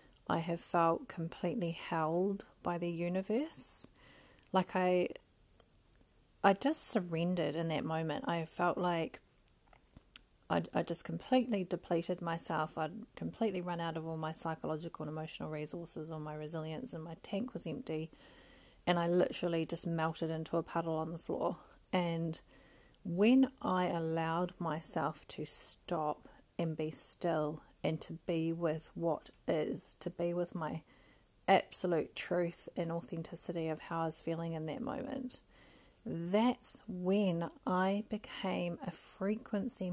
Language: English